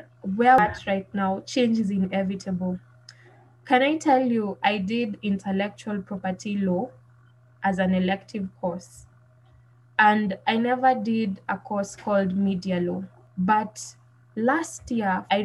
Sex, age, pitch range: female, 20-39, 180-220 Hz